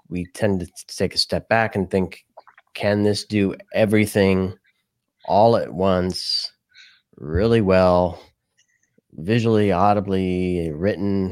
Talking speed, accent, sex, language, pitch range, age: 110 wpm, American, male, English, 90-110 Hz, 30-49